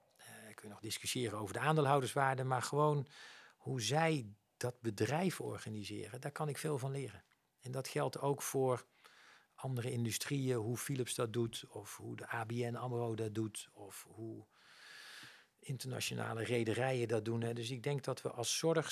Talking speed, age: 160 wpm, 50-69